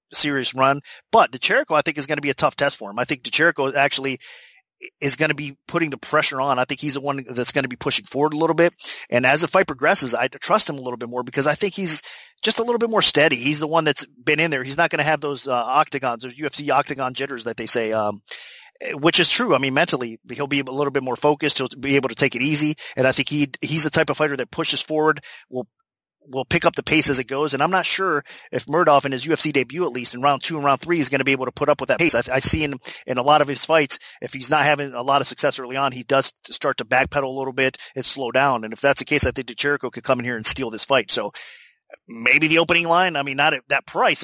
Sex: male